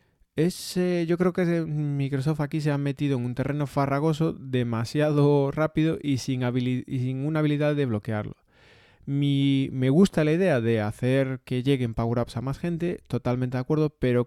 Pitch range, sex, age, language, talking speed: 120-145 Hz, male, 30-49, Spanish, 180 wpm